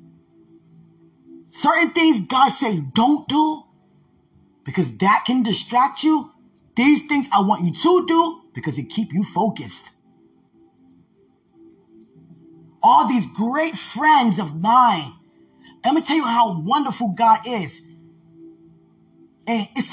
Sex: male